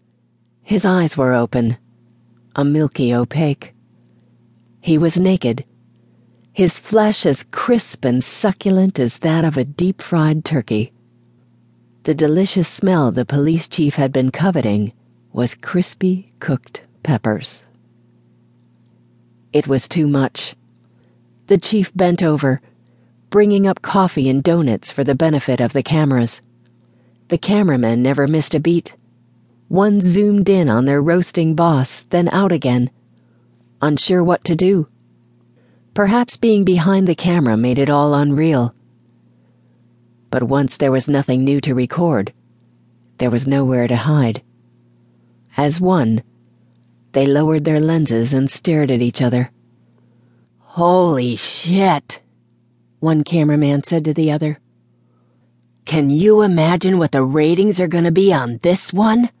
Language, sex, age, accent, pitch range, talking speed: English, female, 50-69, American, 120-170 Hz, 130 wpm